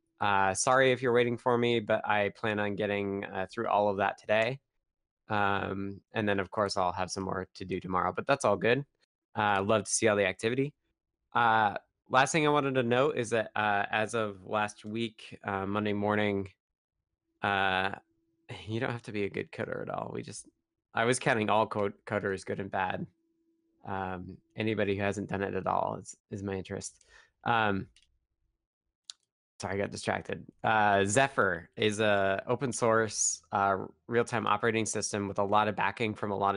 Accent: American